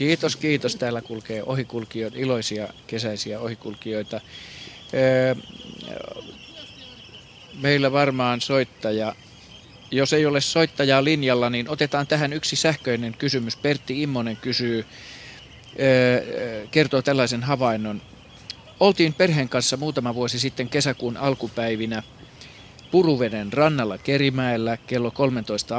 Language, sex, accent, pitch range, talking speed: Finnish, male, native, 110-140 Hz, 95 wpm